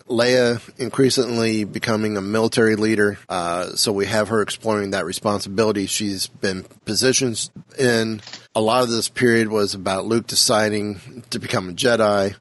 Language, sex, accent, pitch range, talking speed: English, male, American, 100-120 Hz, 150 wpm